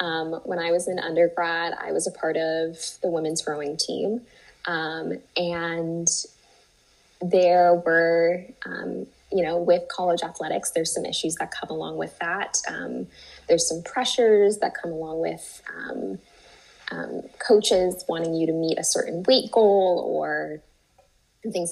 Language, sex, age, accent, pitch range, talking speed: English, female, 10-29, American, 165-185 Hz, 150 wpm